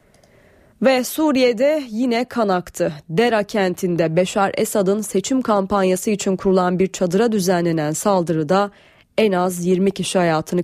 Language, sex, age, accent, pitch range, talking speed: Turkish, female, 30-49, native, 180-230 Hz, 125 wpm